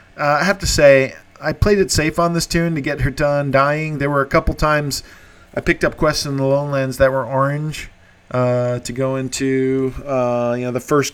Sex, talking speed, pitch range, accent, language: male, 220 wpm, 130-160 Hz, American, English